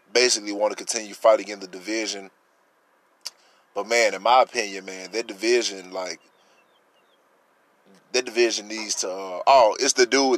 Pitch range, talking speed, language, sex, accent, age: 100-125 Hz, 150 wpm, English, male, American, 20-39